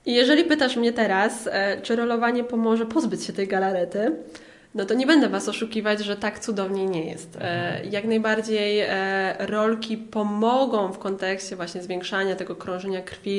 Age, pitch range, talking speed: 20-39, 195-230 Hz, 150 wpm